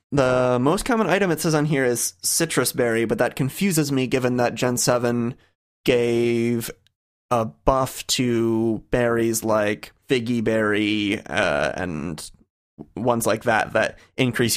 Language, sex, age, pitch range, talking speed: English, male, 30-49, 110-135 Hz, 140 wpm